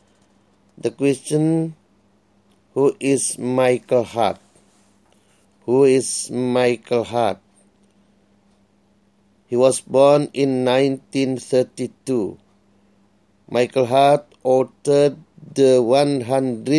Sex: male